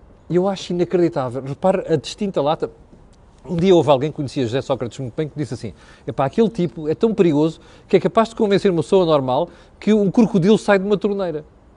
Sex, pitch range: male, 190-260 Hz